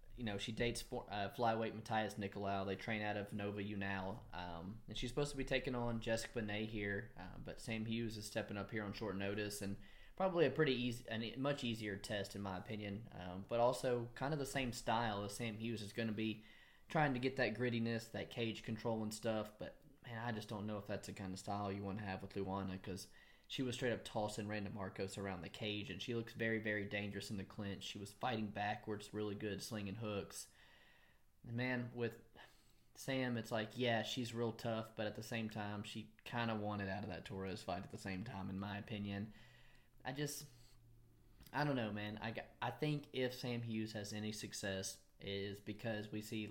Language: English